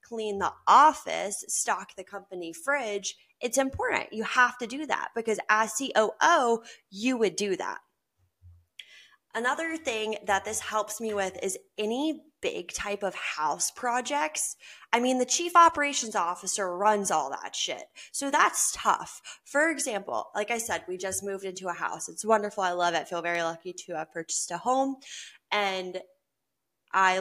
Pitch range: 180-245 Hz